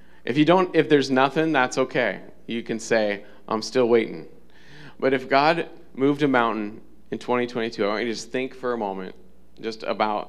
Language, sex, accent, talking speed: English, male, American, 190 wpm